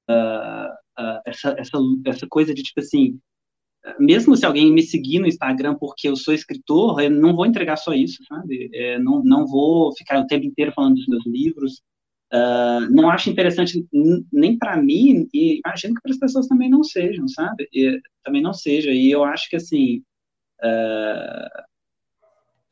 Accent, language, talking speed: Brazilian, Portuguese, 175 wpm